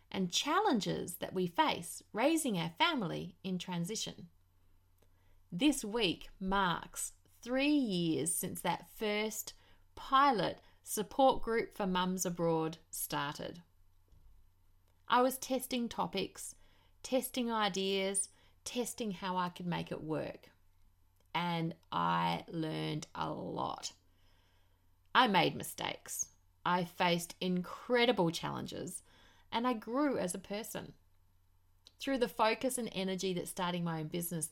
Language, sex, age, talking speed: English, female, 30-49, 115 wpm